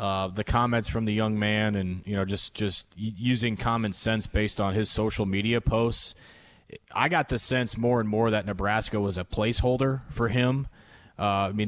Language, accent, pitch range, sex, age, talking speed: English, American, 105-125 Hz, male, 30-49, 195 wpm